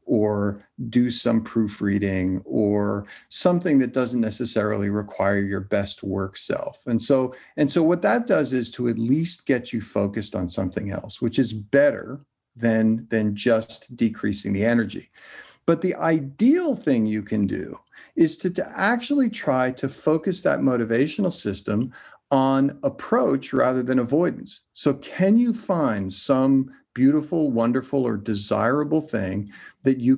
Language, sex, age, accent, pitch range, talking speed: English, male, 50-69, American, 105-145 Hz, 145 wpm